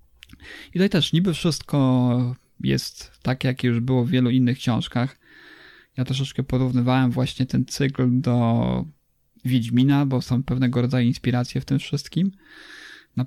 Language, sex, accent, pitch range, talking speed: Polish, male, native, 125-145 Hz, 140 wpm